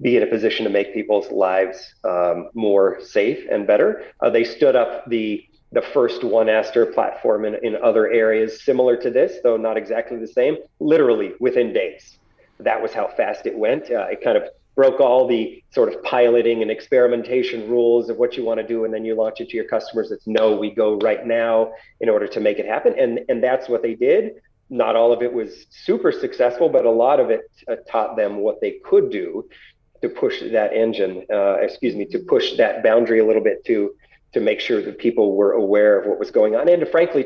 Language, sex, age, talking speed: English, male, 40-59, 220 wpm